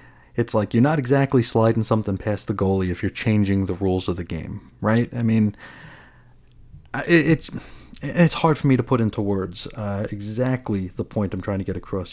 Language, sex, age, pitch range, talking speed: English, male, 30-49, 100-125 Hz, 200 wpm